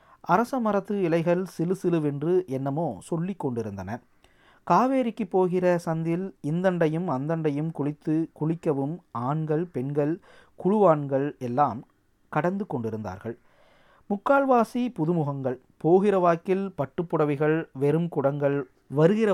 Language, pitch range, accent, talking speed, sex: Tamil, 135-185 Hz, native, 90 wpm, male